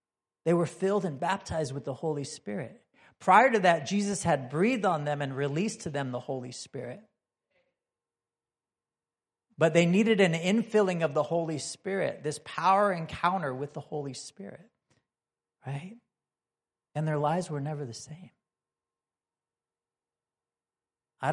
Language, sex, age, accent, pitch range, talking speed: English, male, 40-59, American, 140-185 Hz, 140 wpm